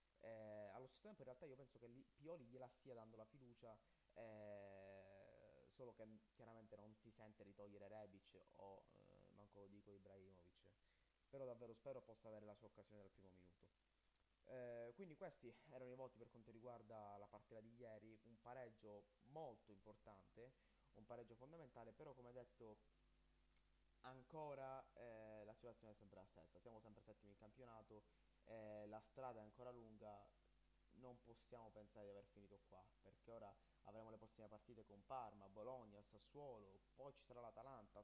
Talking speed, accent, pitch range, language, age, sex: 160 wpm, native, 105-120 Hz, Italian, 20-39, male